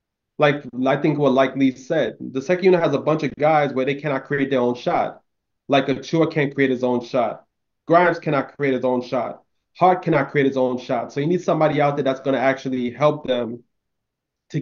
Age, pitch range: 20-39, 130-165 Hz